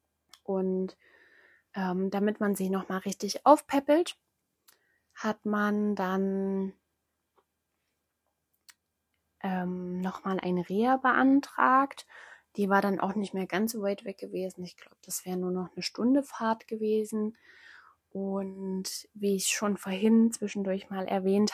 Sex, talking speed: female, 125 wpm